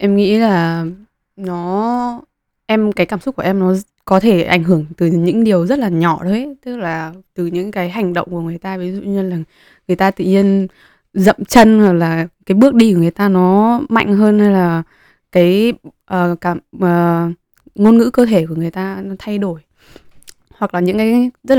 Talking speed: 205 wpm